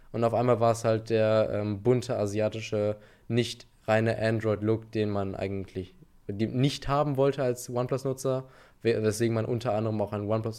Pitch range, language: 110-130 Hz, German